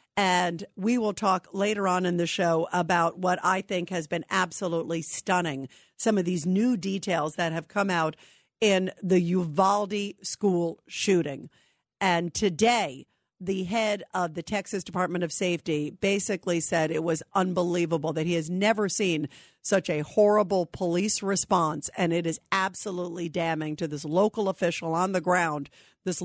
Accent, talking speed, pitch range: American, 160 wpm, 175-210 Hz